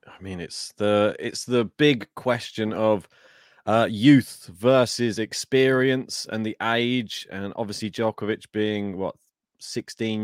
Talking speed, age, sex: 130 wpm, 20-39, male